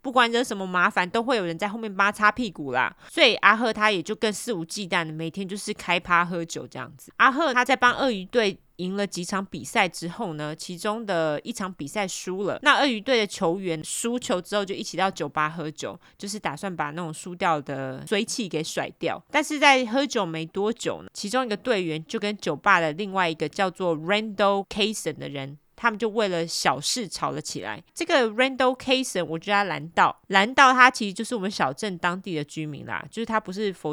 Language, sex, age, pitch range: Chinese, female, 20-39, 165-225 Hz